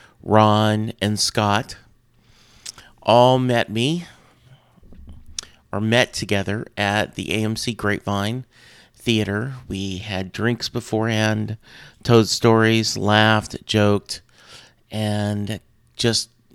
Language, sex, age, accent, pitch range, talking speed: English, male, 40-59, American, 100-120 Hz, 85 wpm